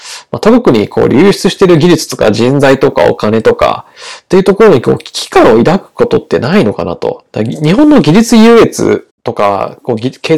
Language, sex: Japanese, male